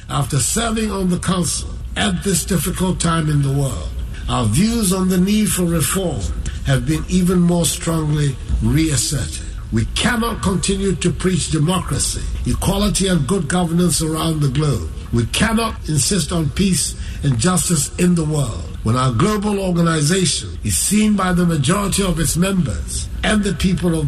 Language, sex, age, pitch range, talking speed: English, male, 60-79, 125-185 Hz, 160 wpm